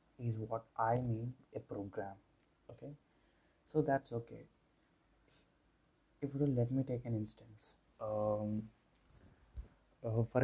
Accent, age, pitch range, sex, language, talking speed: native, 20-39, 110-130 Hz, male, Telugu, 115 wpm